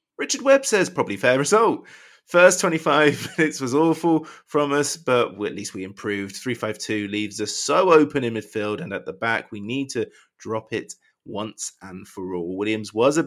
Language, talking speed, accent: English, 185 wpm, British